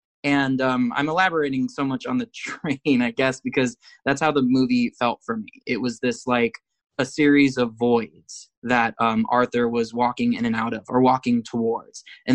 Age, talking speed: 20-39, 195 wpm